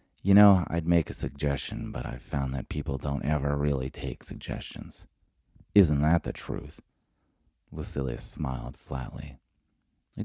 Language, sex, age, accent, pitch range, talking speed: English, male, 30-49, American, 65-90 Hz, 140 wpm